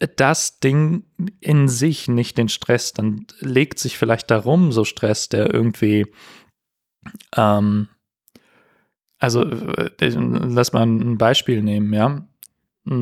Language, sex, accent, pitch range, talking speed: German, male, German, 105-125 Hz, 110 wpm